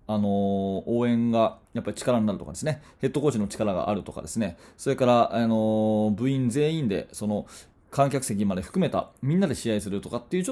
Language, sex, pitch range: Japanese, male, 110-165 Hz